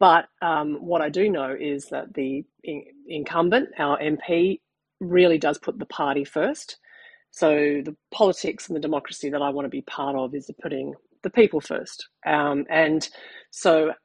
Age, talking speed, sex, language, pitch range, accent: 40-59, 165 wpm, female, English, 150-195 Hz, Australian